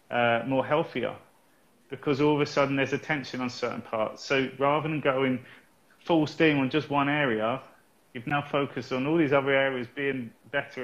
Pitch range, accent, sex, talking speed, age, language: 130-145 Hz, British, male, 190 wpm, 30-49, English